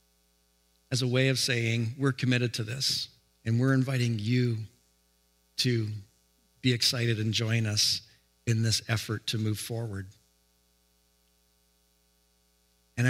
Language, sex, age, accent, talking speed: English, male, 50-69, American, 120 wpm